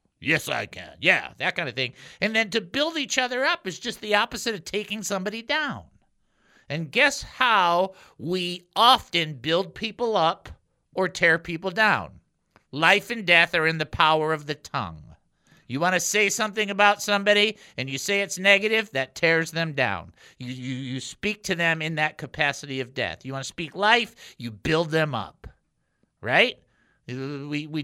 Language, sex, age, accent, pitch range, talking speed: English, male, 50-69, American, 155-210 Hz, 185 wpm